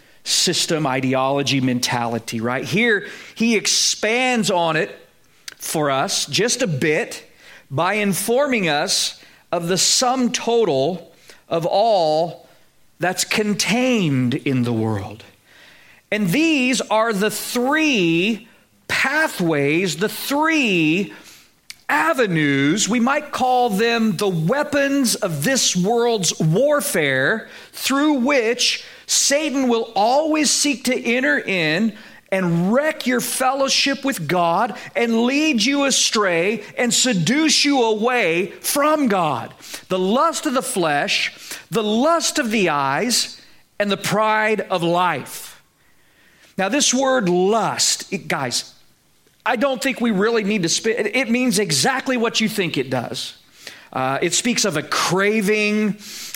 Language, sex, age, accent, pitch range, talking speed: English, male, 40-59, American, 175-255 Hz, 125 wpm